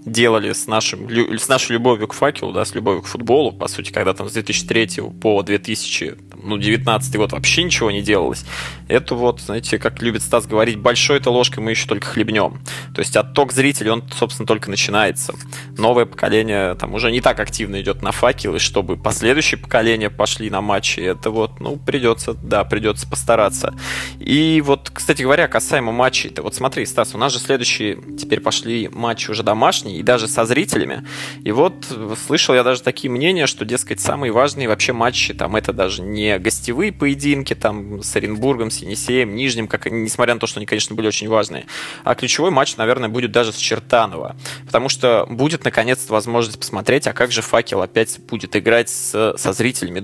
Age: 20-39